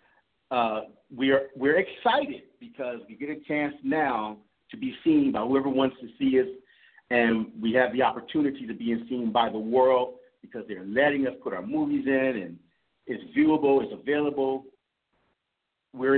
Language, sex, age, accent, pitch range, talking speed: English, male, 50-69, American, 125-160 Hz, 165 wpm